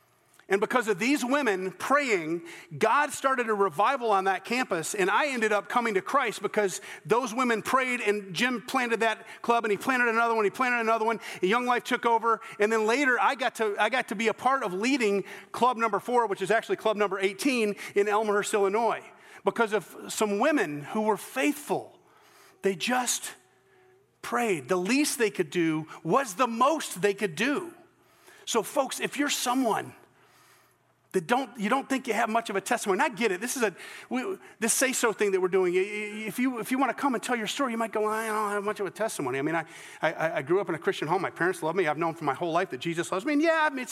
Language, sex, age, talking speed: English, male, 40-59, 230 wpm